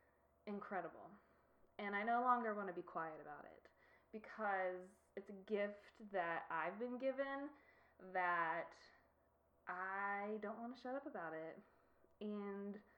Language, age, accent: English, 20-39, American